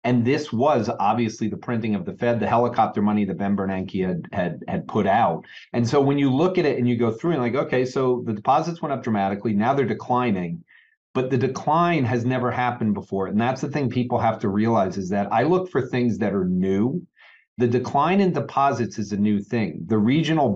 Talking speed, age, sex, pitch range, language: 225 wpm, 40-59, male, 110-130 Hz, English